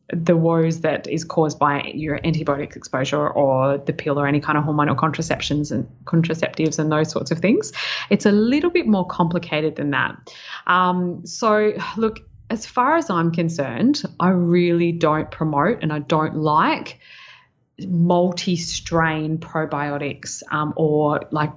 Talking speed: 145 wpm